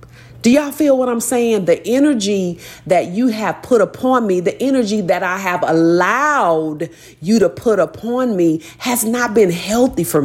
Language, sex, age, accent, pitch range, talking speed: English, female, 40-59, American, 145-215 Hz, 175 wpm